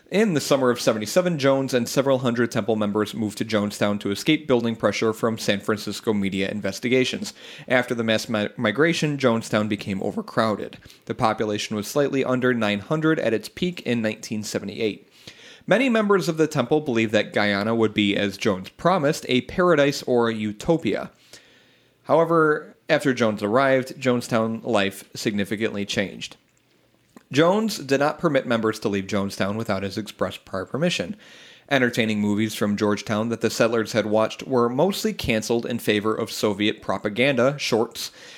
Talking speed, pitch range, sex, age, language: 150 wpm, 105-140 Hz, male, 30-49, English